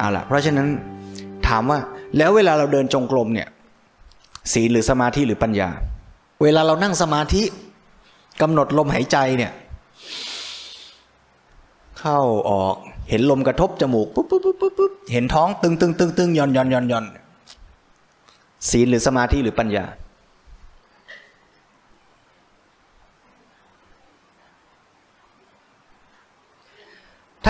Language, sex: Thai, male